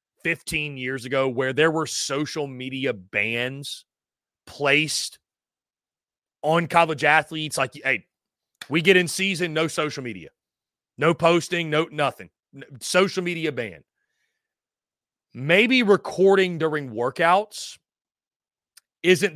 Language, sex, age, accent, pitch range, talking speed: English, male, 30-49, American, 140-230 Hz, 105 wpm